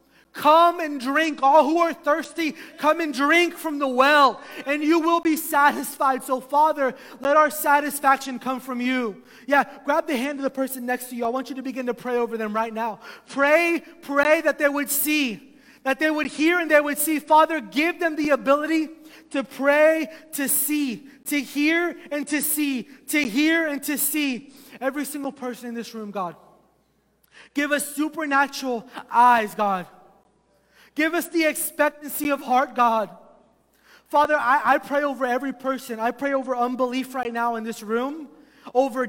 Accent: American